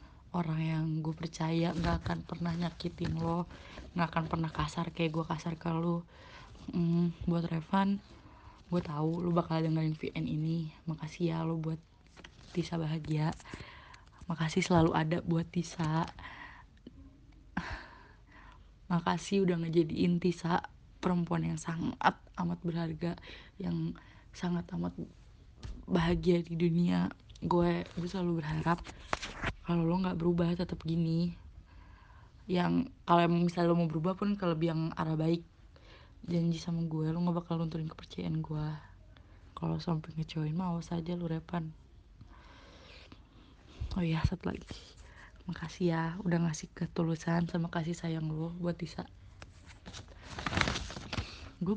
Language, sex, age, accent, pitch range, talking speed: Indonesian, female, 20-39, native, 155-175 Hz, 125 wpm